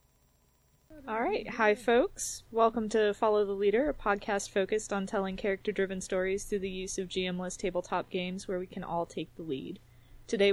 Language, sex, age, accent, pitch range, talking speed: English, female, 20-39, American, 190-225 Hz, 170 wpm